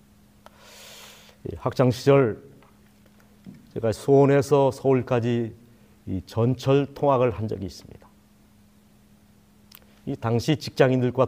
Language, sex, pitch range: Korean, male, 105-160 Hz